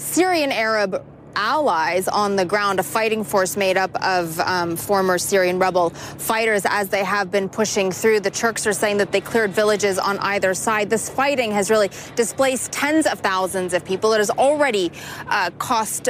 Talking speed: 185 wpm